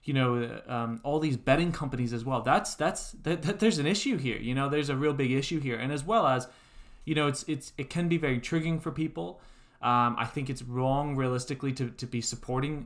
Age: 20-39